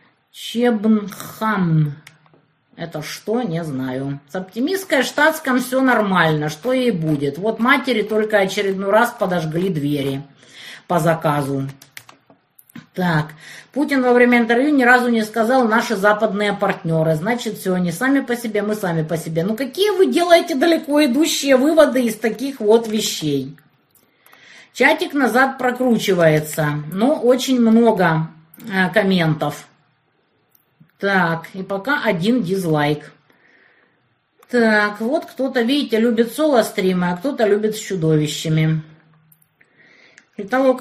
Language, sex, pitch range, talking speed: Russian, female, 165-250 Hz, 115 wpm